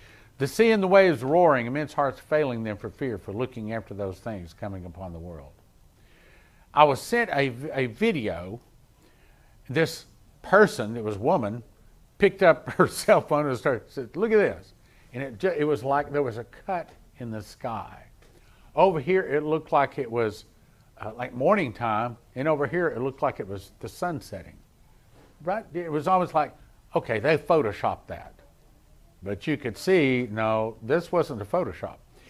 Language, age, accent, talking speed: English, 50-69, American, 180 wpm